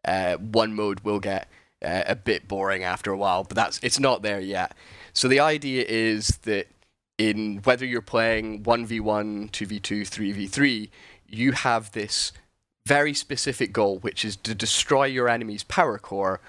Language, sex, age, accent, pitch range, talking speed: English, male, 10-29, British, 100-125 Hz, 160 wpm